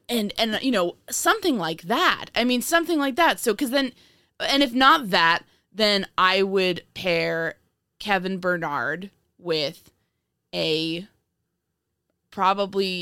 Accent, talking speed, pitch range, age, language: American, 130 wpm, 165-210 Hz, 20-39, English